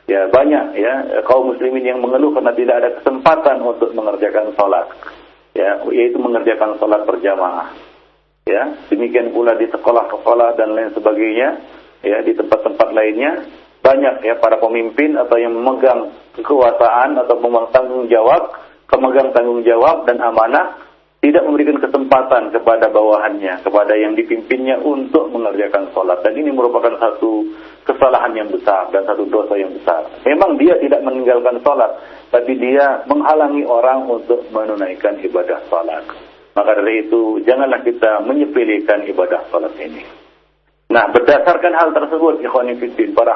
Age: 50-69